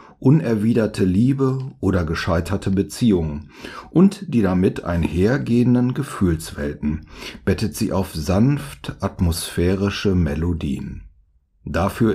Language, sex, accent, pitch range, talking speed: German, male, German, 90-125 Hz, 85 wpm